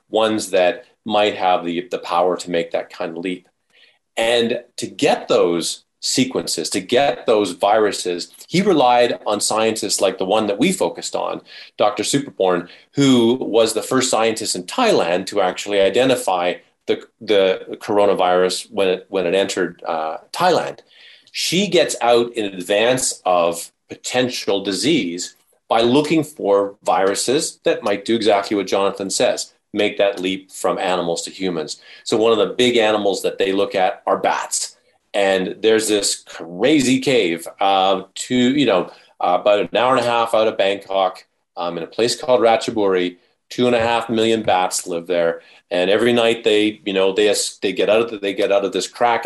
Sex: male